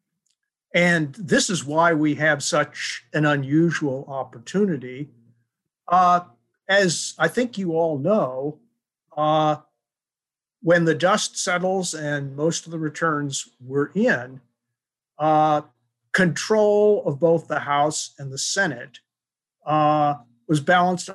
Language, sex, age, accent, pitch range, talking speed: English, male, 50-69, American, 140-175 Hz, 115 wpm